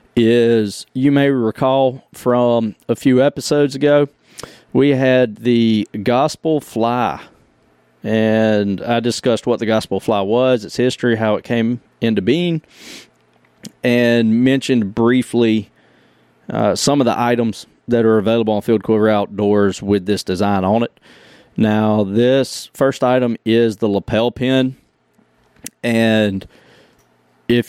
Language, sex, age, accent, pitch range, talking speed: English, male, 40-59, American, 100-120 Hz, 130 wpm